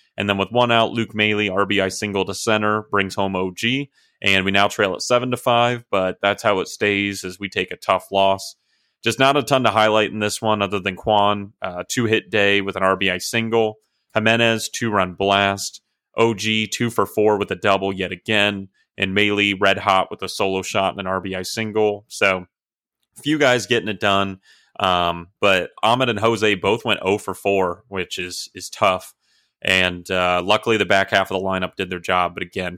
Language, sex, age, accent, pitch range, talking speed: English, male, 30-49, American, 95-110 Hz, 205 wpm